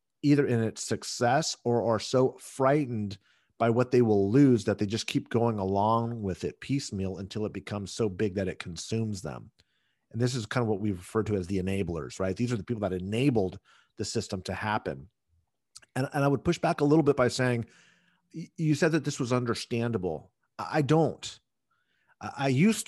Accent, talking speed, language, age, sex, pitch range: American, 195 wpm, English, 40-59, male, 110-155 Hz